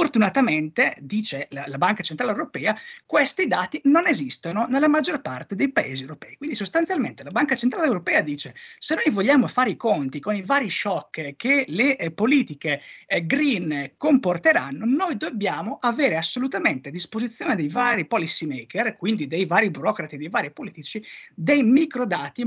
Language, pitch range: Italian, 170-270 Hz